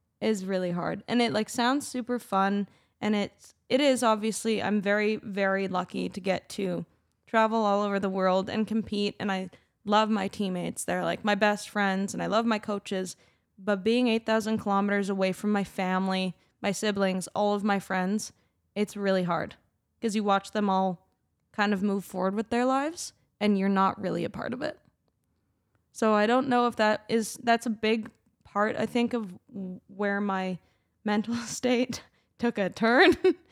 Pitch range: 190-225 Hz